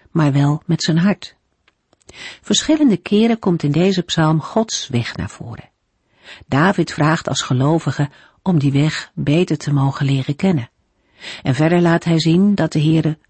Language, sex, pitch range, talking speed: Dutch, female, 140-190 Hz, 160 wpm